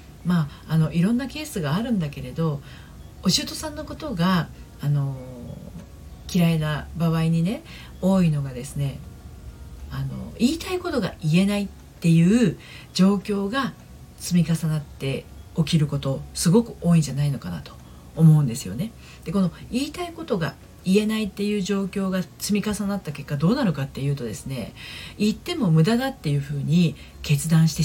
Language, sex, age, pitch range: Japanese, female, 40-59, 145-210 Hz